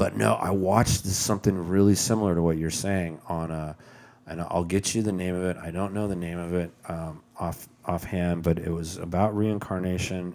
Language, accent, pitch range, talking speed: English, American, 85-105 Hz, 210 wpm